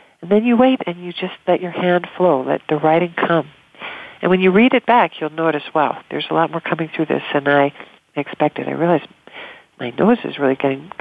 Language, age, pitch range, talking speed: English, 50-69, 145-175 Hz, 225 wpm